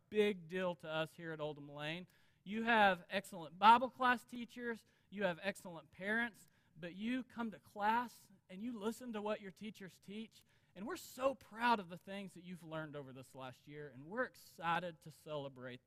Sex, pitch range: male, 155-210 Hz